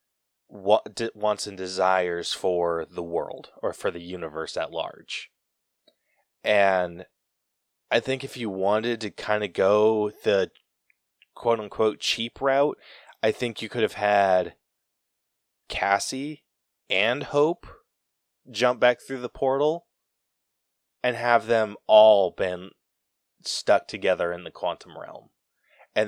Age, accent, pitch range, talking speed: 20-39, American, 95-120 Hz, 125 wpm